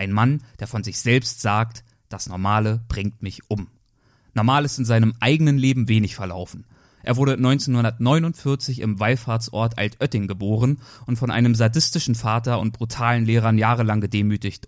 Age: 30-49